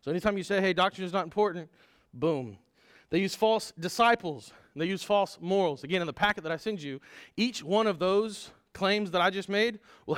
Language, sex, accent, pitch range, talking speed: English, male, American, 170-215 Hz, 210 wpm